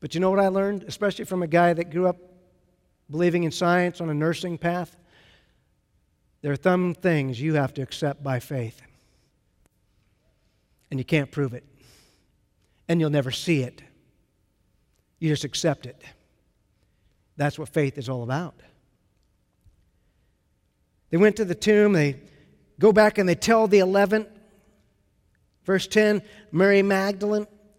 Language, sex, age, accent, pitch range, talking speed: English, male, 50-69, American, 145-205 Hz, 145 wpm